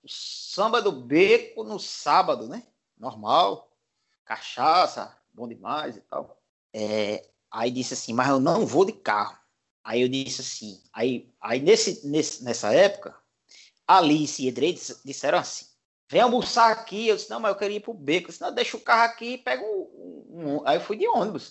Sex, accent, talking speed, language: male, Brazilian, 160 wpm, Portuguese